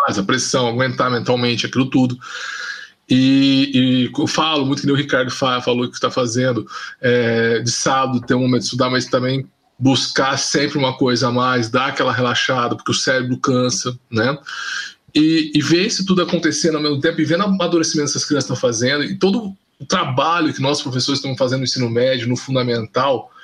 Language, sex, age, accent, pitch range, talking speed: Portuguese, male, 20-39, Brazilian, 130-160 Hz, 190 wpm